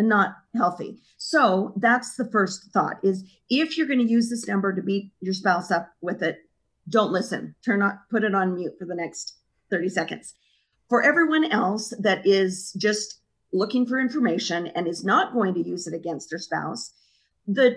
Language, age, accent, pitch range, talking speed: English, 40-59, American, 190-245 Hz, 185 wpm